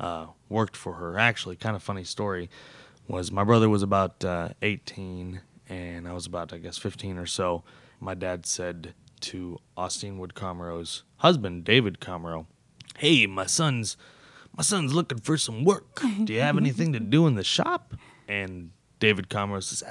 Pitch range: 95-130 Hz